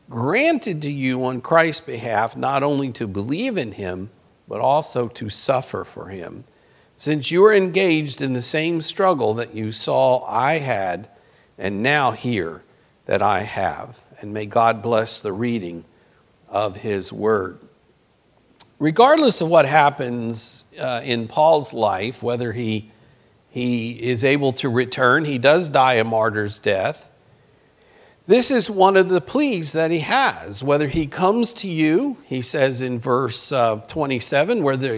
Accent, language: American, English